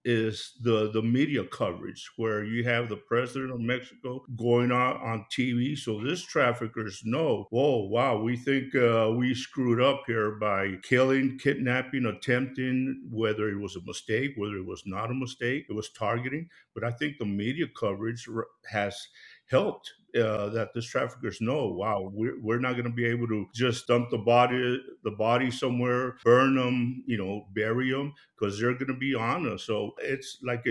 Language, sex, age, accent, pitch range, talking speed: English, male, 50-69, American, 110-130 Hz, 180 wpm